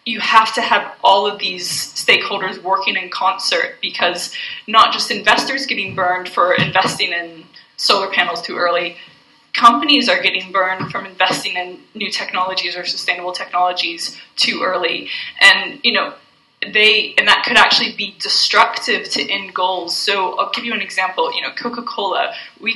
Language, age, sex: English, 20-39, female